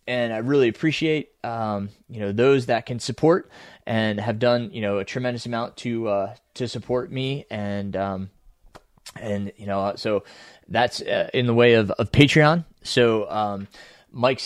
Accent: American